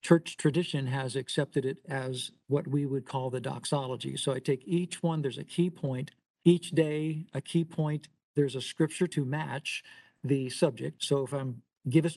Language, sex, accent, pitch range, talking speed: English, male, American, 140-170 Hz, 185 wpm